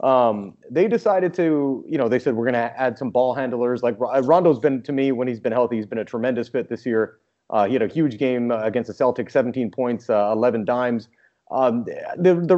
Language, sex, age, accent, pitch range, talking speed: English, male, 30-49, American, 130-170 Hz, 235 wpm